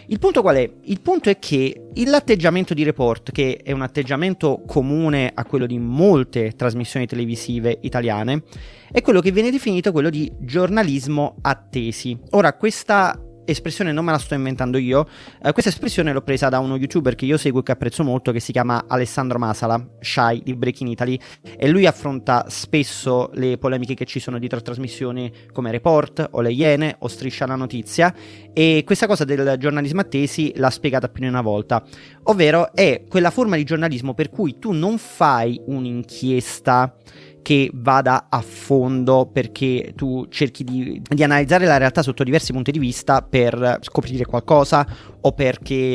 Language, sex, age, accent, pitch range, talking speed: Italian, male, 30-49, native, 120-150 Hz, 170 wpm